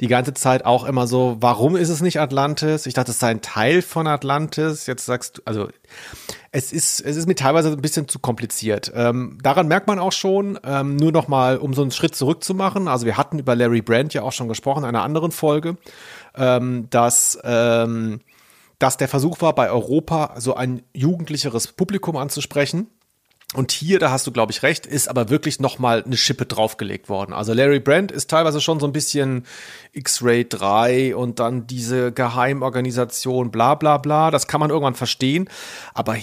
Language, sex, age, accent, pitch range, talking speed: German, male, 30-49, German, 120-155 Hz, 190 wpm